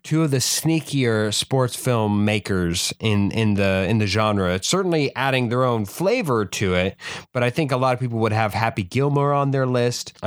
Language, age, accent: English, 20-39, American